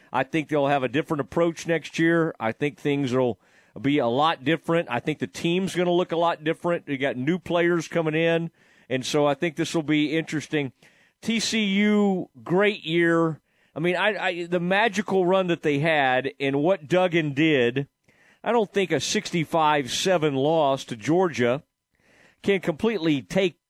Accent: American